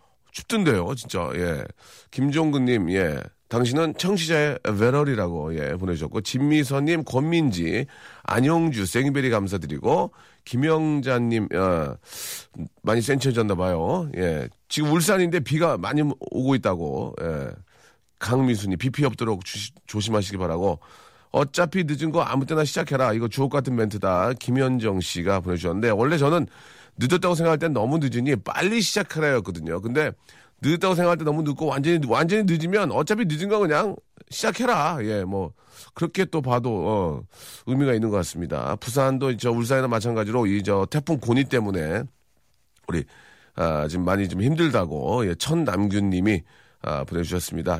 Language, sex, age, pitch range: Korean, male, 40-59, 100-150 Hz